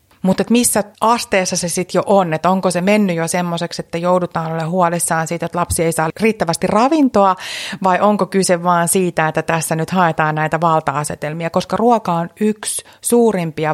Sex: female